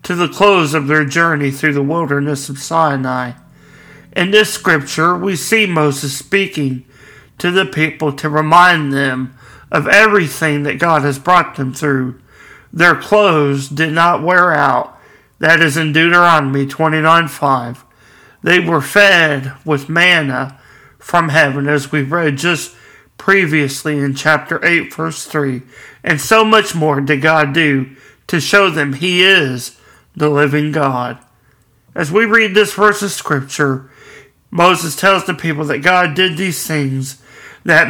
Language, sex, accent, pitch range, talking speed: English, male, American, 140-180 Hz, 145 wpm